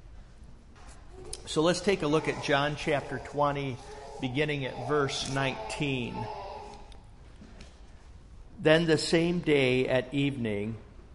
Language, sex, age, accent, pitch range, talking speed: English, male, 50-69, American, 115-150 Hz, 100 wpm